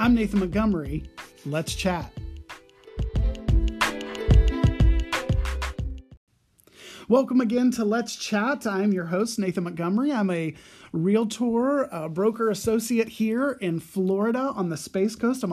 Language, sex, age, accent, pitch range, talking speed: English, male, 30-49, American, 180-215 Hz, 110 wpm